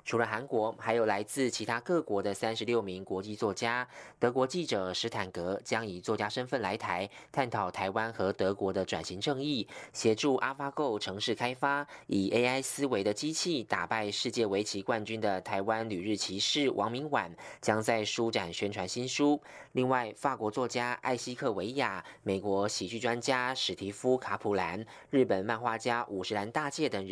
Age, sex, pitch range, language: 20-39, male, 100-130 Hz, German